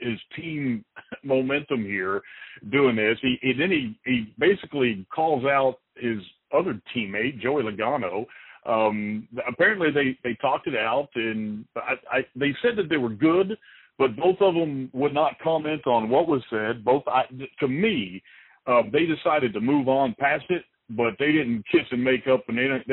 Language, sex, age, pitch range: English, male, 50-69, 115-150 Hz